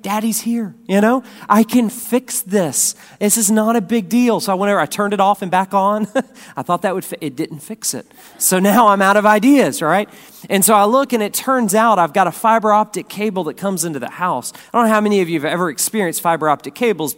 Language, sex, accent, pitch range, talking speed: English, male, American, 180-220 Hz, 250 wpm